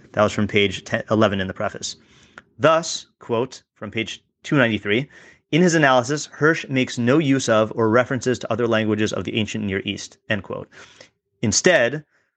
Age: 30-49